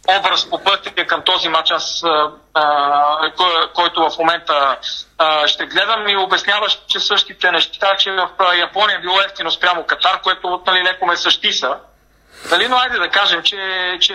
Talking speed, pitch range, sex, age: 165 wpm, 175-210 Hz, male, 40-59